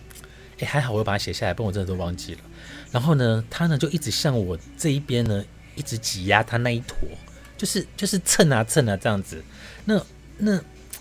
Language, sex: Chinese, male